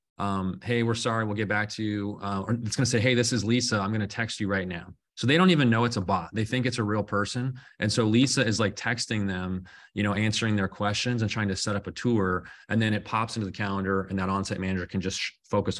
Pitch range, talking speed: 100-120 Hz, 275 wpm